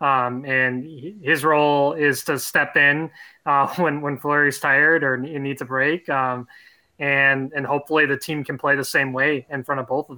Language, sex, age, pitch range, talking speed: English, male, 20-39, 130-160 Hz, 195 wpm